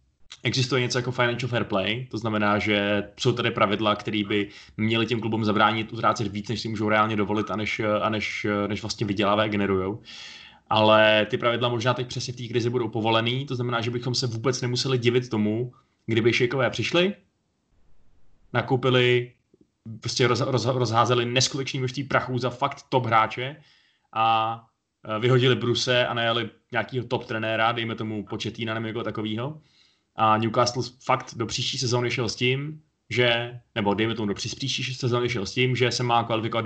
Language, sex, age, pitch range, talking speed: Czech, male, 20-39, 110-130 Hz, 170 wpm